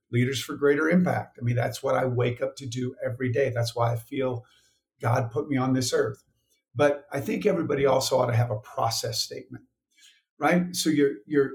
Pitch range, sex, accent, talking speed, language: 115-140 Hz, male, American, 210 wpm, English